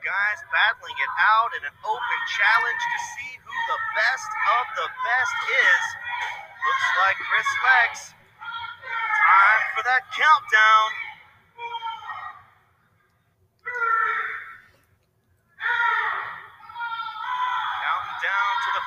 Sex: male